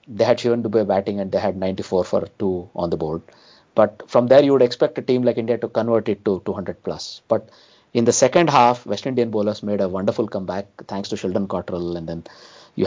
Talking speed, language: 235 wpm, English